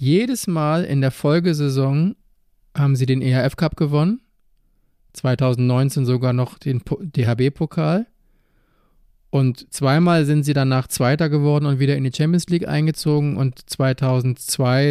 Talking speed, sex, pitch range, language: 125 wpm, male, 125-145 Hz, German